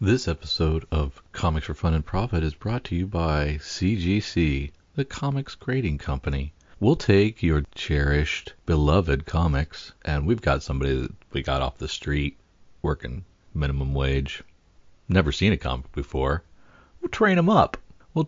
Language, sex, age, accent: English, male, 40-59, American